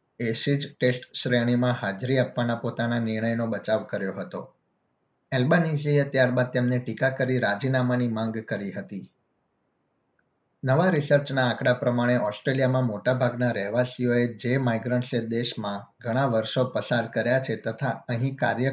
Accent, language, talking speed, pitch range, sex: native, Gujarati, 110 wpm, 115-130 Hz, male